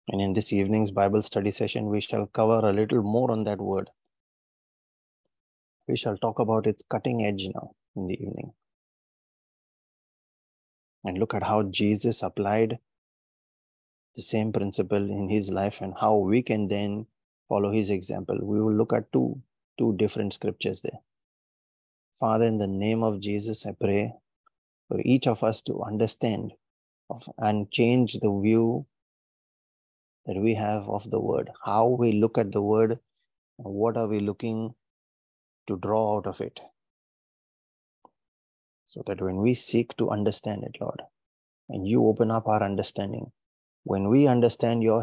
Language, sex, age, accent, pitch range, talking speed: English, male, 30-49, Indian, 100-115 Hz, 150 wpm